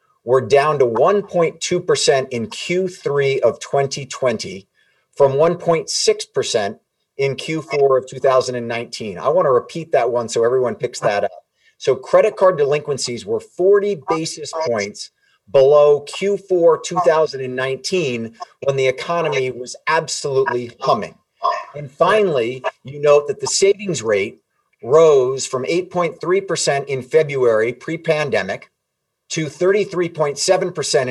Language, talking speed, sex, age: English, 110 wpm, male, 40-59